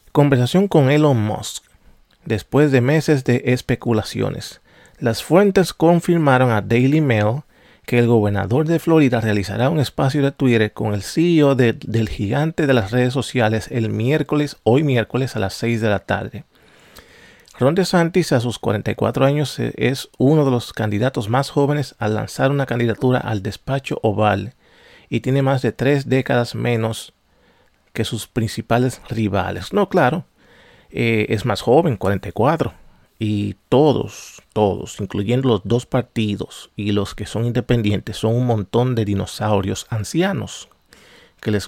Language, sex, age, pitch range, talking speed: Spanish, male, 40-59, 110-140 Hz, 150 wpm